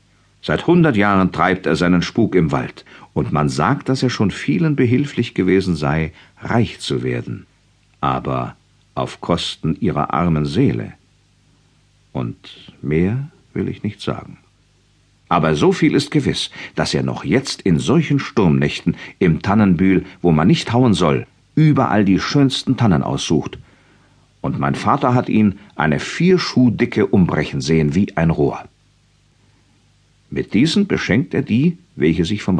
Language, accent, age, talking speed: German, German, 50-69, 145 wpm